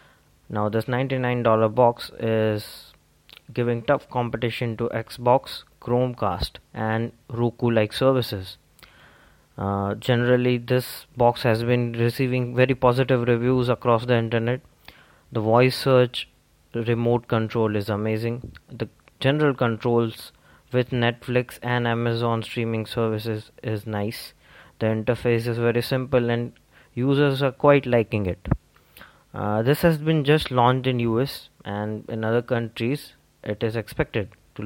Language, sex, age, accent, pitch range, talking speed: English, male, 20-39, Indian, 110-125 Hz, 125 wpm